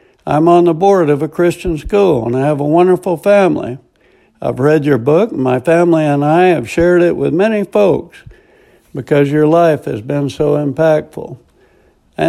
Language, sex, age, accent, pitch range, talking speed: English, male, 60-79, American, 140-180 Hz, 180 wpm